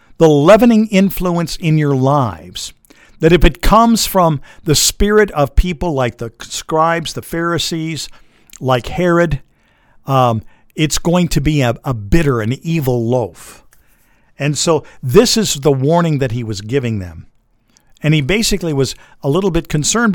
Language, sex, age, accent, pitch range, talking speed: English, male, 50-69, American, 115-160 Hz, 155 wpm